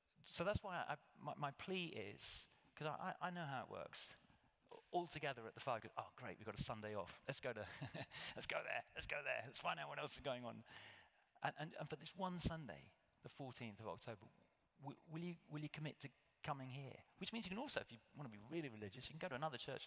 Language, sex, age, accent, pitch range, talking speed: English, male, 40-59, British, 110-150 Hz, 250 wpm